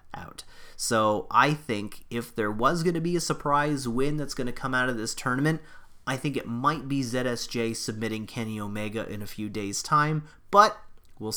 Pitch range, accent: 105-140 Hz, American